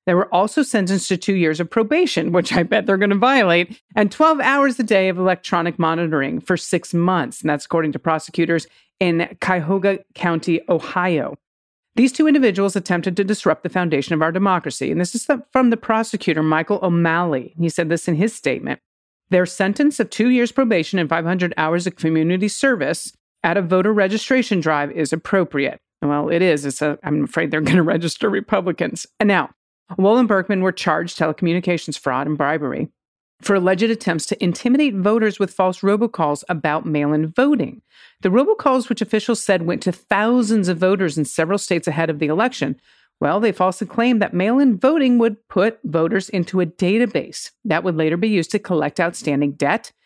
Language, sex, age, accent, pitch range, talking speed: English, female, 40-59, American, 165-220 Hz, 185 wpm